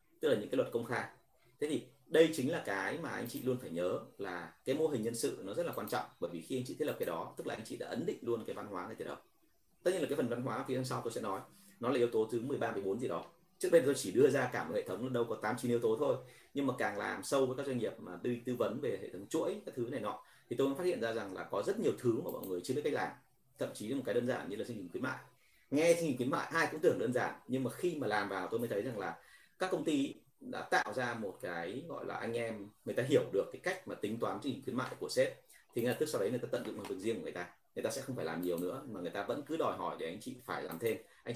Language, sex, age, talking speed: Vietnamese, male, 30-49, 330 wpm